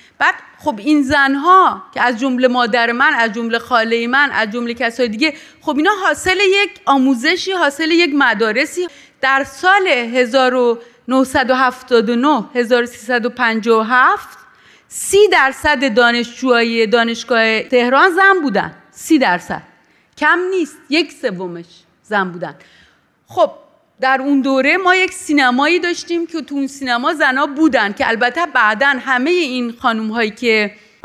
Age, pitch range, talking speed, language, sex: 30-49, 235-300 Hz, 130 wpm, Persian, female